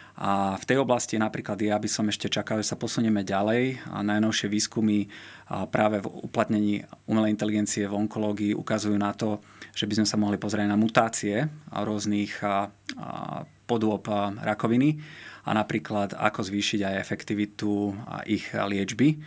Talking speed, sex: 140 wpm, male